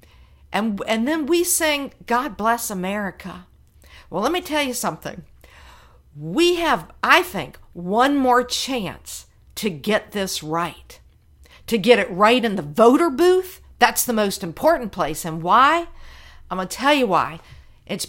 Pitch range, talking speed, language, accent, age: 185-250 Hz, 155 wpm, English, American, 50-69